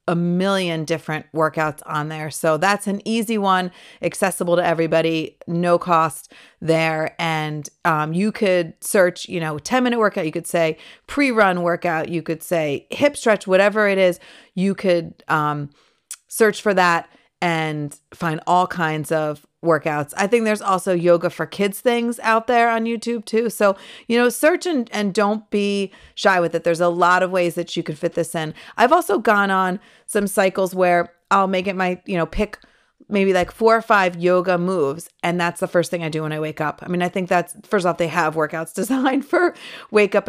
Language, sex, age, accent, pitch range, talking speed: English, female, 40-59, American, 170-215 Hz, 195 wpm